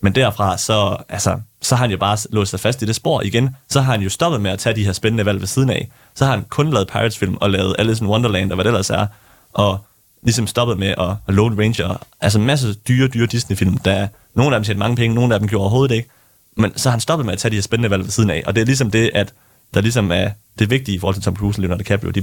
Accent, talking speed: native, 295 wpm